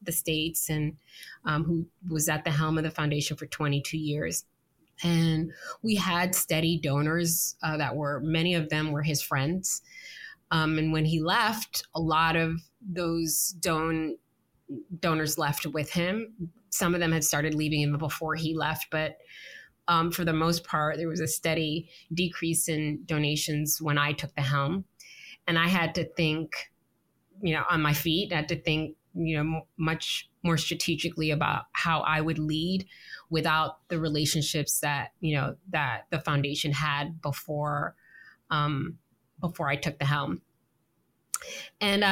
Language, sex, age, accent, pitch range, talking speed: English, female, 20-39, American, 150-170 Hz, 160 wpm